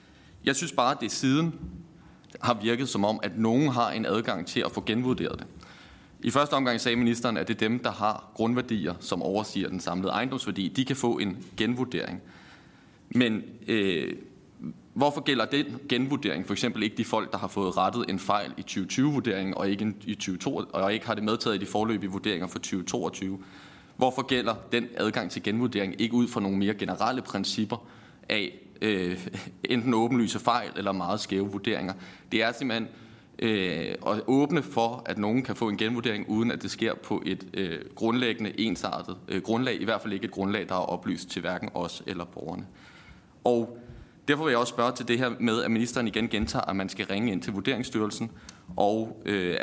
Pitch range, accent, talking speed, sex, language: 100-120 Hz, native, 190 wpm, male, Danish